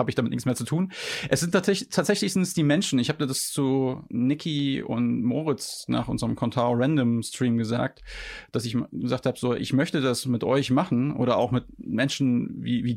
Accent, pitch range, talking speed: German, 125-145 Hz, 210 wpm